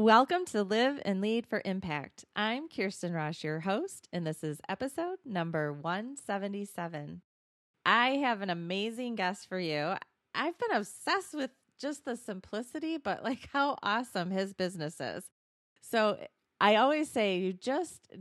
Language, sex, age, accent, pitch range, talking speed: English, female, 30-49, American, 175-240 Hz, 150 wpm